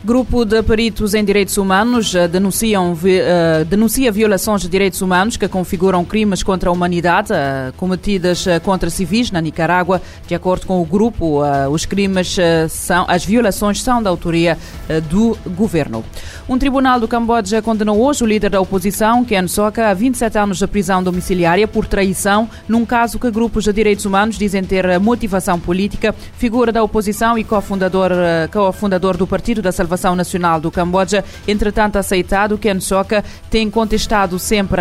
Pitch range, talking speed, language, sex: 180-215 Hz, 155 wpm, Portuguese, female